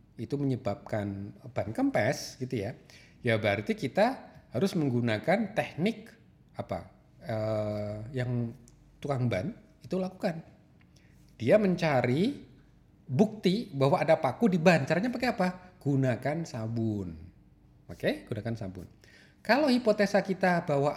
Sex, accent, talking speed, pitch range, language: male, native, 110 wpm, 120-185 Hz, Indonesian